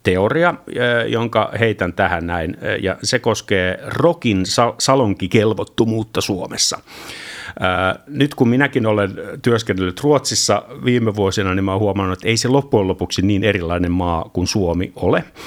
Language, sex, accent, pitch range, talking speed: Finnish, male, native, 95-125 Hz, 130 wpm